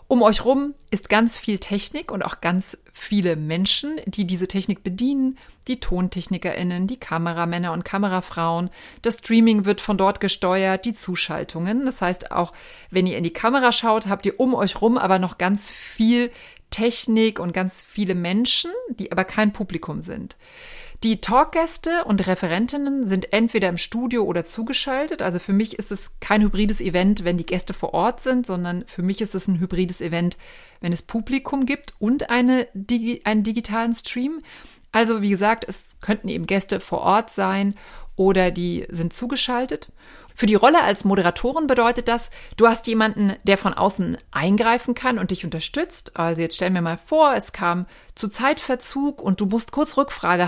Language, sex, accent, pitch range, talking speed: German, female, German, 185-240 Hz, 170 wpm